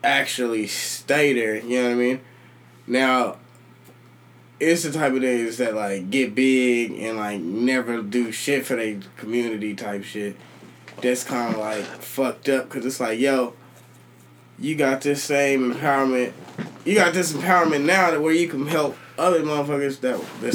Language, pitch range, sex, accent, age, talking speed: English, 110-140 Hz, male, American, 20-39, 165 wpm